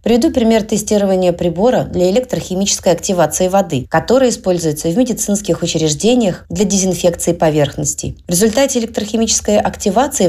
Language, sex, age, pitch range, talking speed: Russian, female, 30-49, 165-215 Hz, 115 wpm